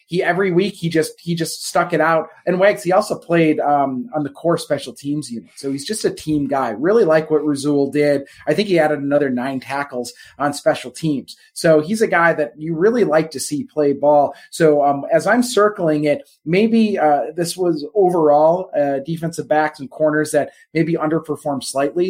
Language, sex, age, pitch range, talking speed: English, male, 30-49, 140-170 Hz, 205 wpm